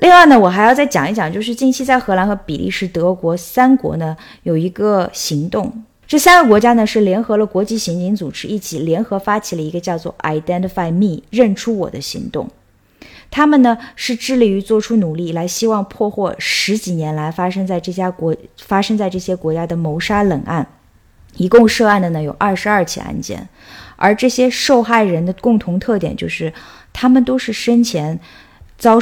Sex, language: female, Chinese